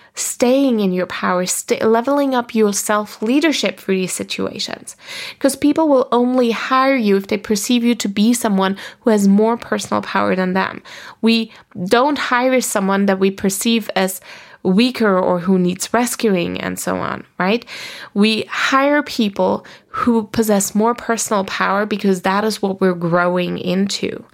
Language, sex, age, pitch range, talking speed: English, female, 20-39, 195-250 Hz, 160 wpm